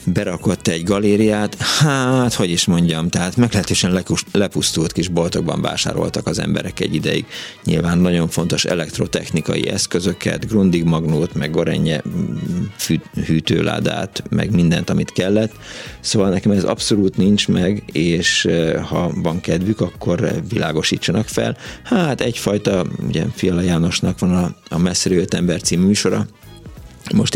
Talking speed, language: 125 wpm, Hungarian